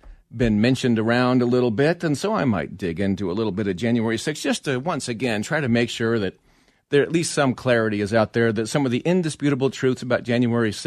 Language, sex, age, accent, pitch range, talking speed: English, male, 40-59, American, 120-165 Hz, 235 wpm